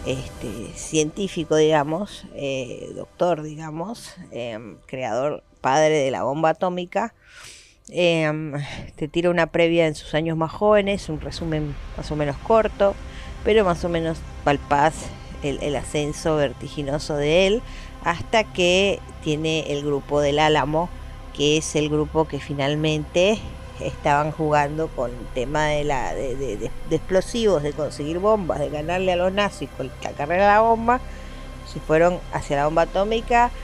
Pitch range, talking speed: 150-175 Hz, 150 wpm